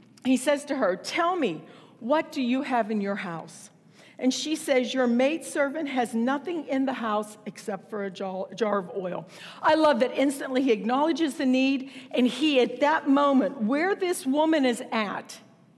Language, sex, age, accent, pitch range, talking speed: English, female, 50-69, American, 225-315 Hz, 180 wpm